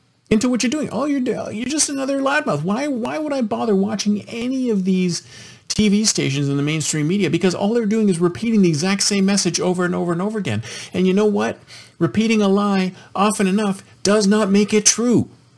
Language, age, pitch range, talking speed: English, 50-69, 135-205 Hz, 210 wpm